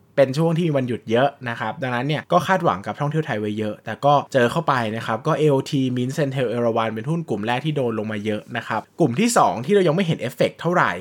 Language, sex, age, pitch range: Thai, male, 20-39, 115-150 Hz